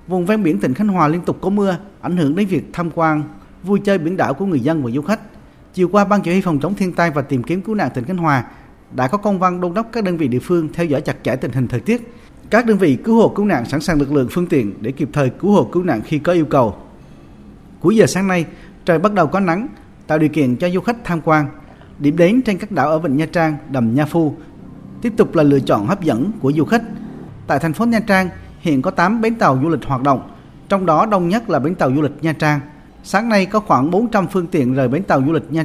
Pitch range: 145-195 Hz